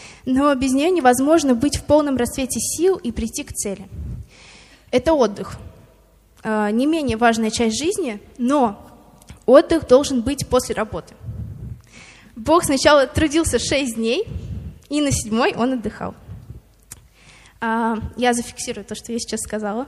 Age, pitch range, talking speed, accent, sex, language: 20-39, 225-280 Hz, 130 wpm, native, female, Russian